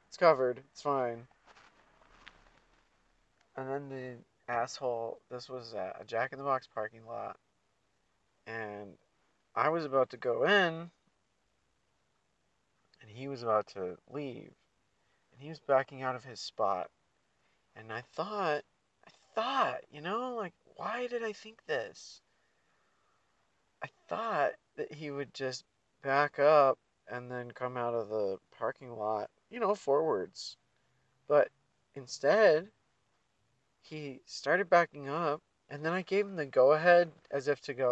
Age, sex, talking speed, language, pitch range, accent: 40-59, male, 135 wpm, English, 125-170 Hz, American